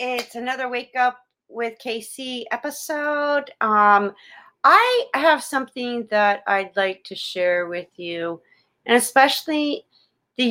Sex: female